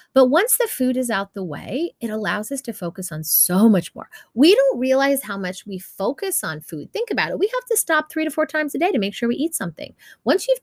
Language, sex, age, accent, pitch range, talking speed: English, female, 30-49, American, 190-305 Hz, 265 wpm